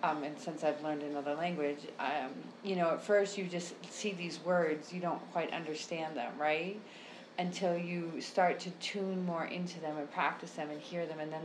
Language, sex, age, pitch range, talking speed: English, female, 30-49, 155-195 Hz, 205 wpm